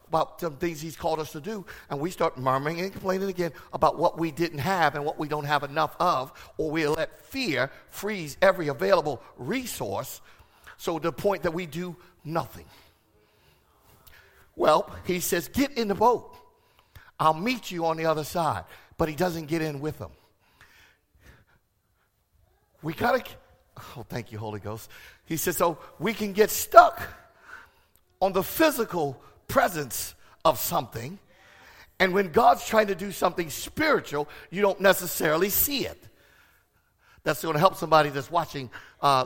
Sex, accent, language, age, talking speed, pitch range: male, American, English, 60-79, 160 wpm, 155-200 Hz